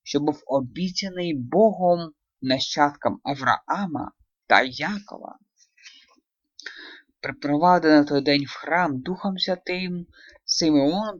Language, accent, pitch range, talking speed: Russian, native, 135-185 Hz, 85 wpm